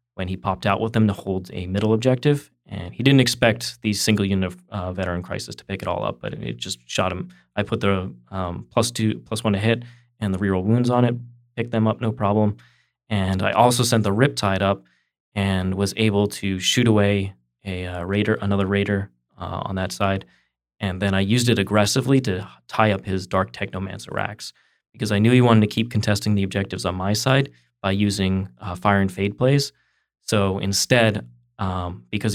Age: 20-39